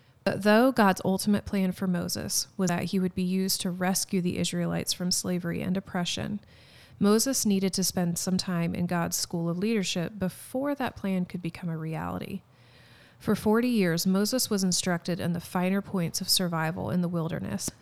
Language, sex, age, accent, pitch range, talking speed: English, female, 30-49, American, 165-195 Hz, 180 wpm